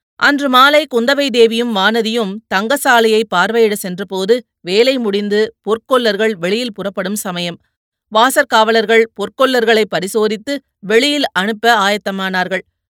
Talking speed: 95 wpm